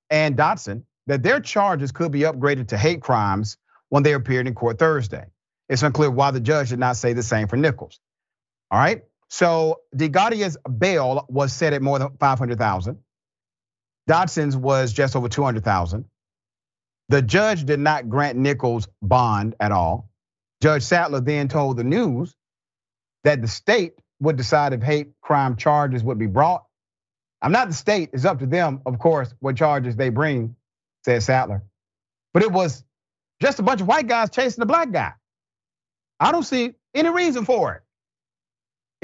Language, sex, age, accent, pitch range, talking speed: English, male, 40-59, American, 120-160 Hz, 165 wpm